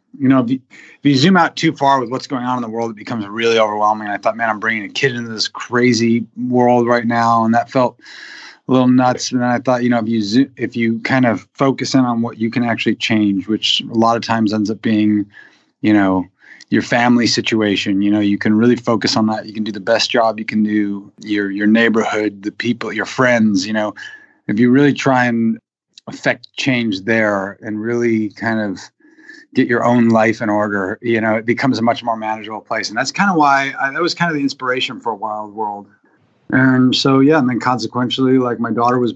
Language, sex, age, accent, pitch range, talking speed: English, male, 30-49, American, 110-125 Hz, 235 wpm